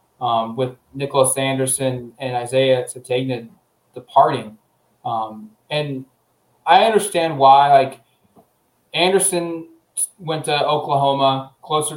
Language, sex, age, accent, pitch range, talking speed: English, male, 20-39, American, 135-160 Hz, 95 wpm